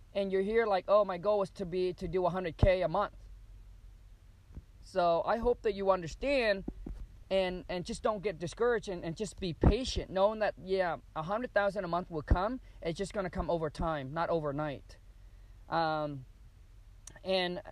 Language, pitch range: English, 145-195 Hz